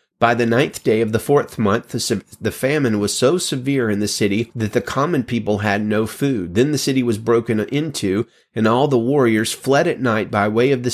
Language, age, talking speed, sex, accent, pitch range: English, 30-49, 220 wpm, male, American, 105-125 Hz